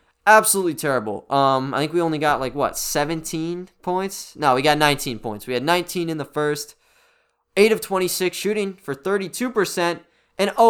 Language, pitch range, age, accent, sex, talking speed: English, 145-210 Hz, 20-39, American, male, 175 wpm